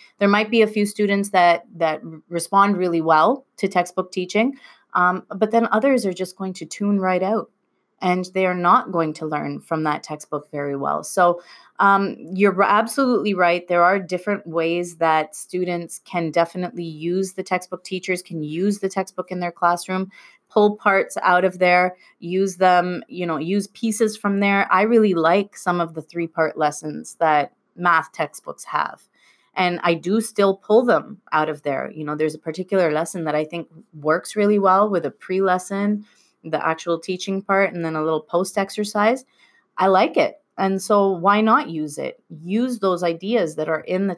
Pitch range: 160-200 Hz